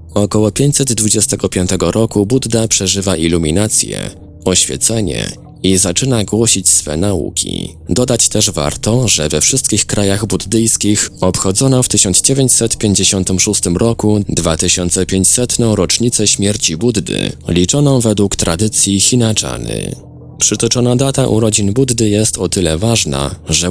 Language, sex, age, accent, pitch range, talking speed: Polish, male, 20-39, native, 85-110 Hz, 105 wpm